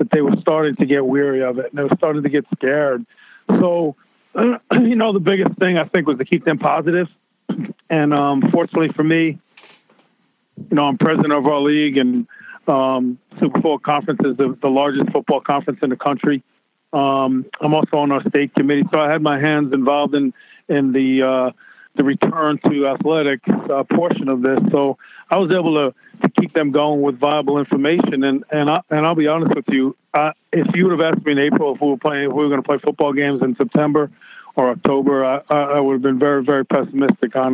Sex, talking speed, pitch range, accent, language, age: male, 215 wpm, 135-155 Hz, American, English, 50-69